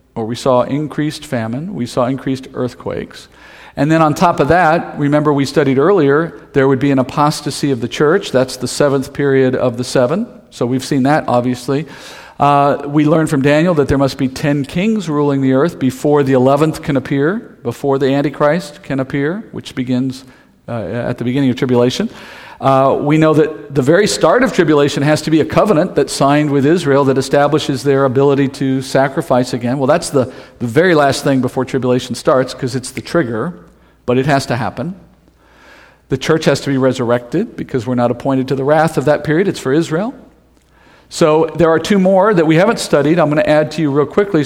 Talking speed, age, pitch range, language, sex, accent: 200 wpm, 50-69, 130-155 Hz, English, male, American